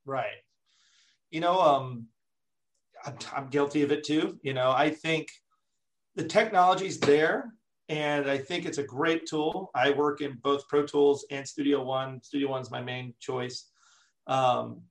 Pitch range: 125-155 Hz